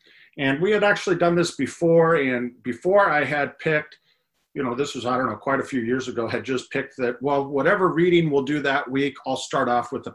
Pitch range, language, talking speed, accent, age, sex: 125-170 Hz, English, 235 wpm, American, 40-59, male